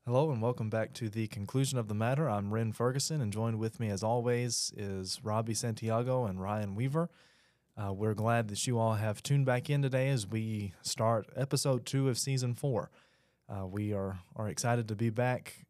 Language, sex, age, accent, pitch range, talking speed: English, male, 20-39, American, 110-130 Hz, 200 wpm